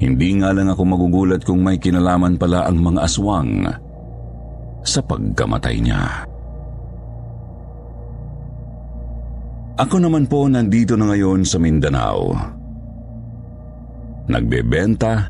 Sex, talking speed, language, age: male, 95 wpm, Filipino, 50-69